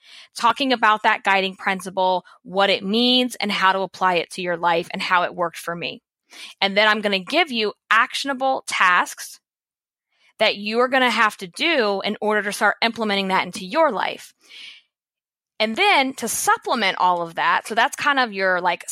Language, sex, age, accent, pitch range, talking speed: English, female, 20-39, American, 185-225 Hz, 190 wpm